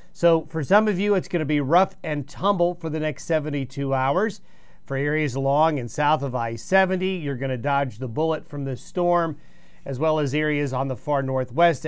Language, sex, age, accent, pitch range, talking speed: English, male, 40-59, American, 140-180 Hz, 205 wpm